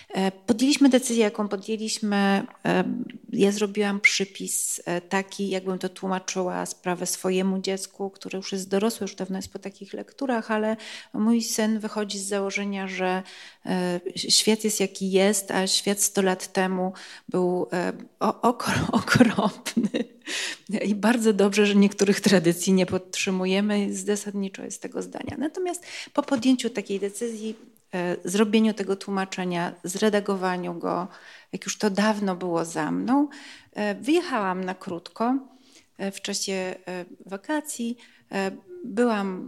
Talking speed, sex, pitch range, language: 120 wpm, female, 190-230 Hz, Polish